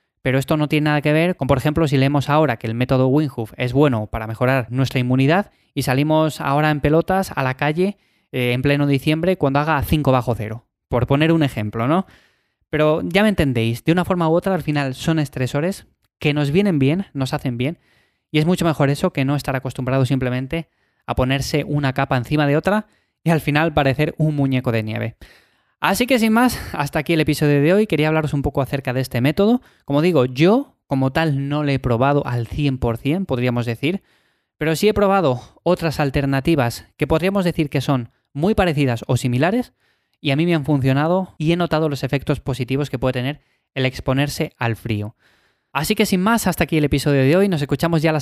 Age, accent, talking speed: 20-39, Spanish, 210 wpm